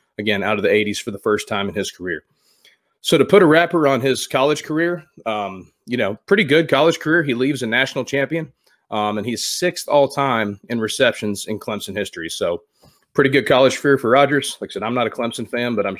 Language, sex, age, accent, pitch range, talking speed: English, male, 30-49, American, 110-140 Hz, 225 wpm